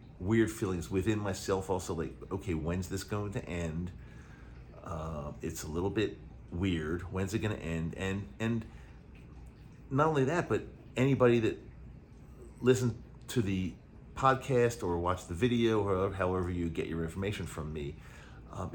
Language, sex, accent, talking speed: English, male, American, 150 wpm